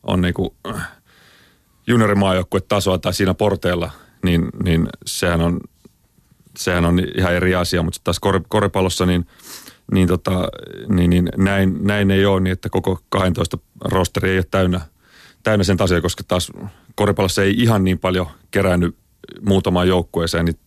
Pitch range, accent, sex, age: 90-100 Hz, native, male, 30-49